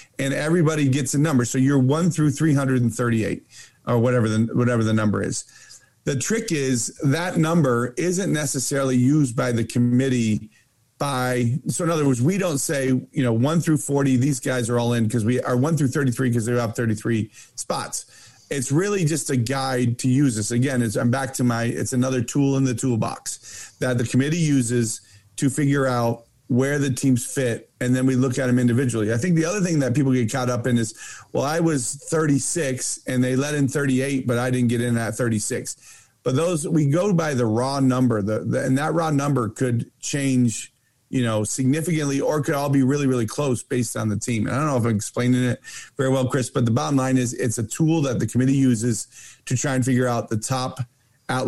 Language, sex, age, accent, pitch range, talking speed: English, male, 40-59, American, 120-140 Hz, 215 wpm